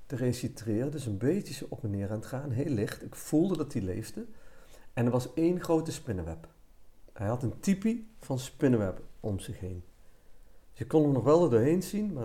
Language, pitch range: Dutch, 105-150 Hz